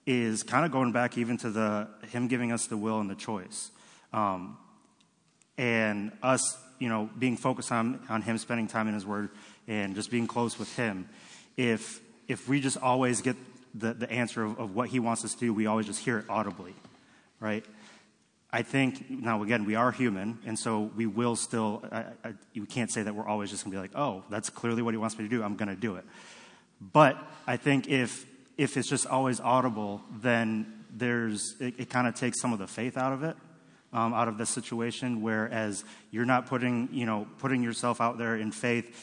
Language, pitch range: English, 110-125 Hz